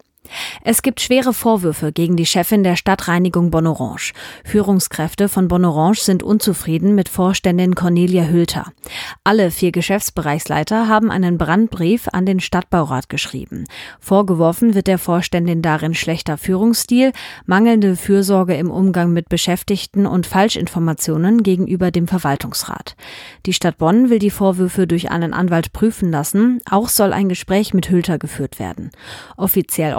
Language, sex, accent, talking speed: German, female, German, 135 wpm